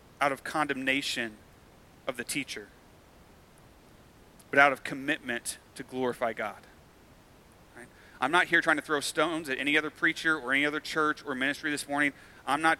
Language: English